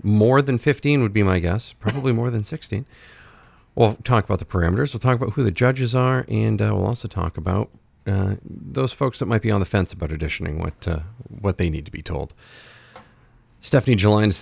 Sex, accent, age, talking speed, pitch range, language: male, American, 40-59, 210 wpm, 95-120 Hz, English